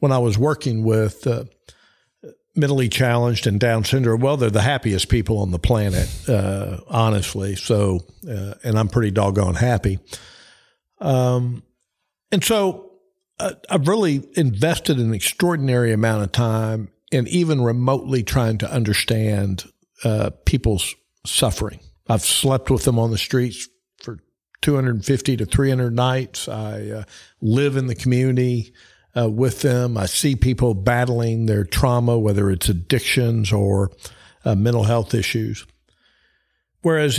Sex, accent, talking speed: male, American, 135 wpm